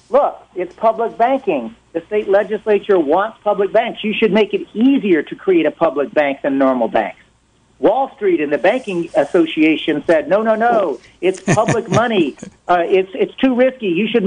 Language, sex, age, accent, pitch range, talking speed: English, male, 60-79, American, 155-230 Hz, 180 wpm